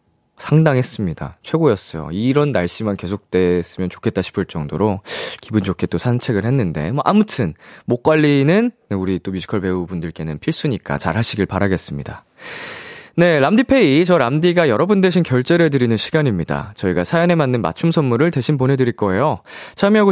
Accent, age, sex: native, 20-39, male